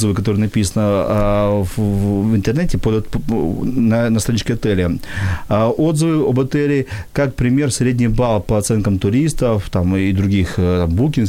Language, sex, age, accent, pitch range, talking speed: Ukrainian, male, 40-59, native, 105-135 Hz, 115 wpm